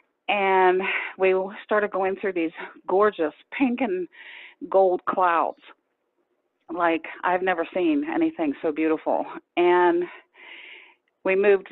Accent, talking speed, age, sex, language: American, 110 wpm, 40-59, female, English